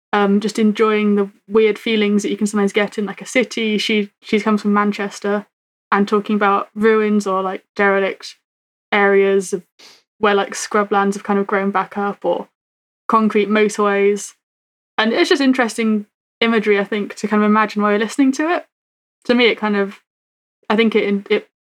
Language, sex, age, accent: English, female, 20-39, British